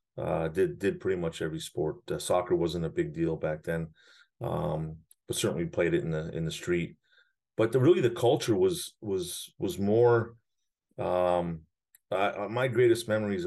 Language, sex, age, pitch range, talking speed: English, male, 40-59, 85-130 Hz, 180 wpm